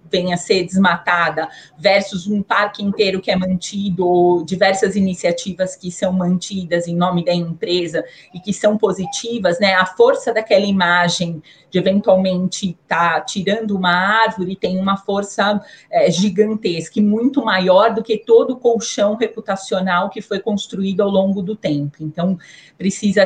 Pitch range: 185-220 Hz